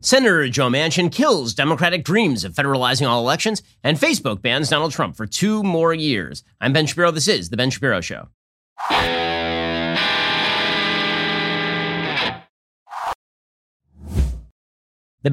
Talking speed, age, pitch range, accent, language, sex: 115 wpm, 30-49, 110-160 Hz, American, English, male